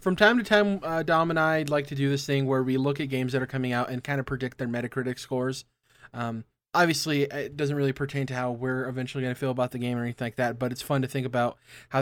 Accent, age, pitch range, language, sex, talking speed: American, 20-39, 125-155 Hz, English, male, 280 wpm